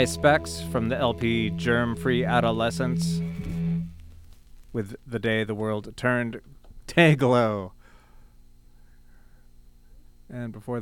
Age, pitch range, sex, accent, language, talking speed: 40-59, 105-140 Hz, male, American, English, 85 wpm